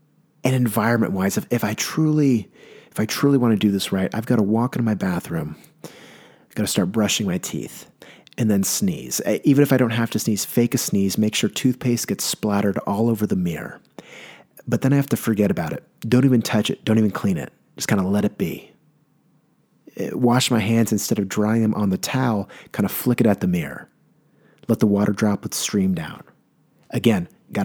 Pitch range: 105-135 Hz